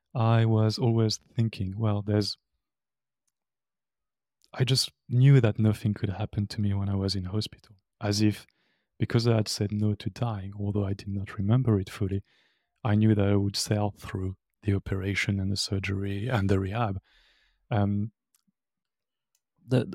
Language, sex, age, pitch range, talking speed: English, male, 30-49, 100-110 Hz, 160 wpm